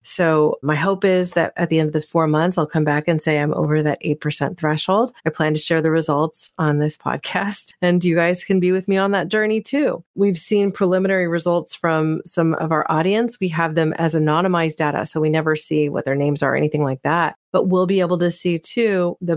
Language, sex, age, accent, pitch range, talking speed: English, female, 30-49, American, 155-180 Hz, 240 wpm